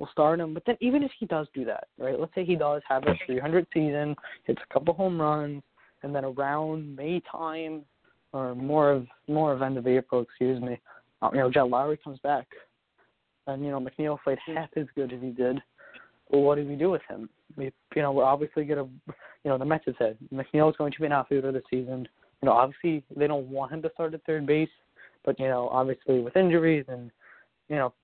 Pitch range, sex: 130-155 Hz, male